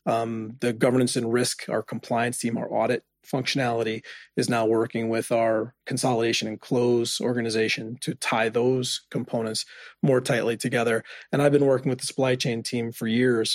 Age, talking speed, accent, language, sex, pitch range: 30-49, 170 wpm, American, English, male, 115-135 Hz